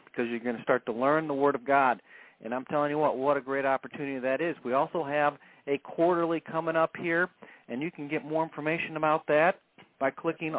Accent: American